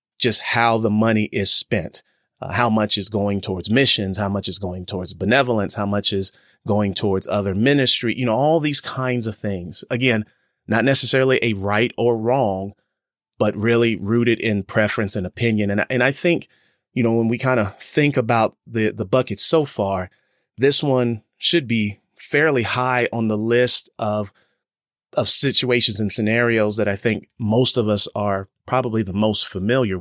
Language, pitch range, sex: English, 100-120 Hz, male